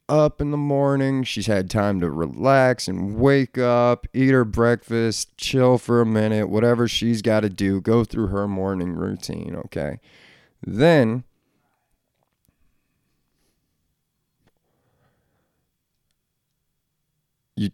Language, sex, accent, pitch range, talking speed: English, male, American, 100-130 Hz, 110 wpm